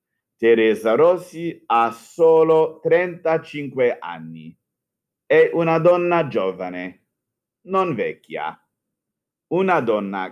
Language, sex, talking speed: Italian, male, 80 wpm